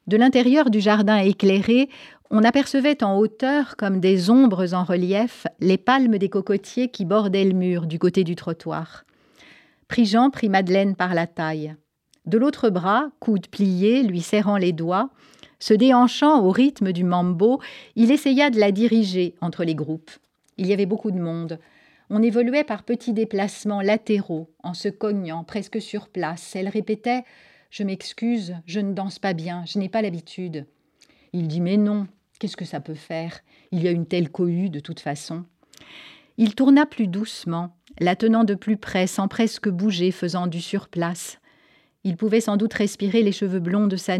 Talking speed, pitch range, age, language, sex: 175 wpm, 180-225 Hz, 40-59, French, female